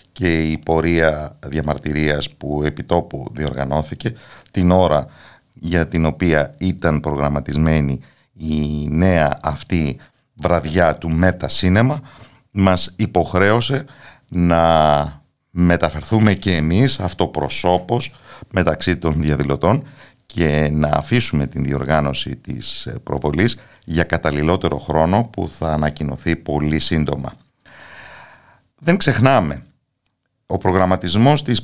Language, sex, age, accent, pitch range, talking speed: Greek, male, 50-69, native, 80-110 Hz, 95 wpm